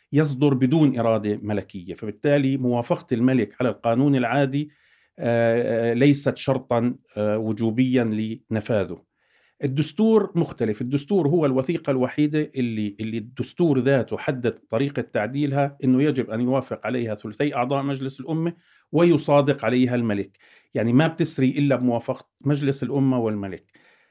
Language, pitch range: Arabic, 115-145 Hz